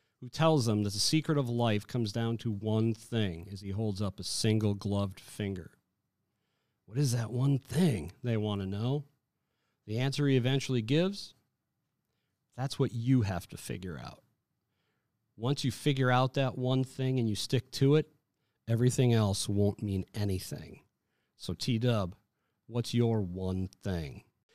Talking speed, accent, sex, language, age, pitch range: 160 wpm, American, male, English, 40-59, 105-135 Hz